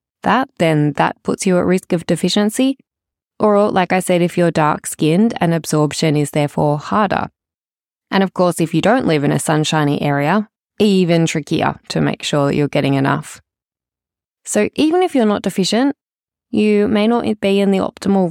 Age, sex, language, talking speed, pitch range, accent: 20-39, female, English, 175 wpm, 155-195 Hz, Australian